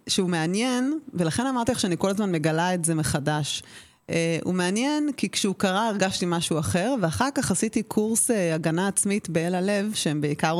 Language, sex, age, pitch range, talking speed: Hebrew, female, 30-49, 165-210 Hz, 180 wpm